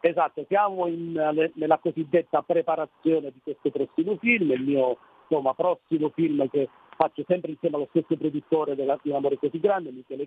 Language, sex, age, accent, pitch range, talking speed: Italian, male, 40-59, native, 145-180 Hz, 150 wpm